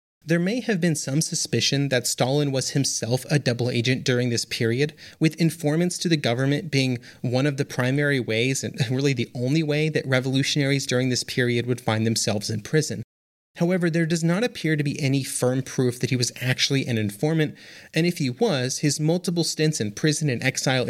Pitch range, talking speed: 125-165 Hz, 200 wpm